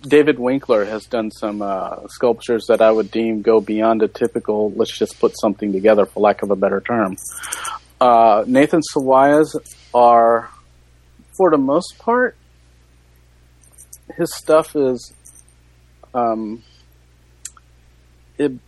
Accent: American